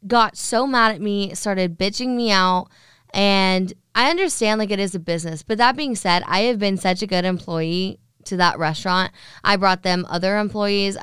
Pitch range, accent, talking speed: 170-205 Hz, American, 195 wpm